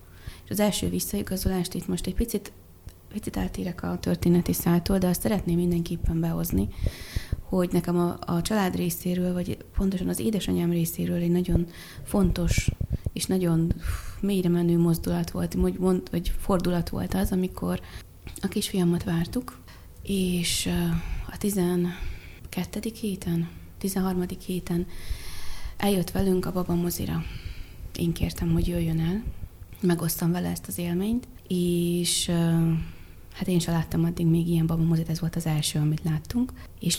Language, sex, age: Hungarian, female, 20-39